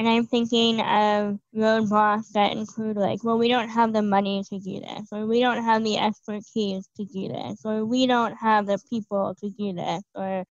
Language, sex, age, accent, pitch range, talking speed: English, female, 10-29, American, 205-240 Hz, 205 wpm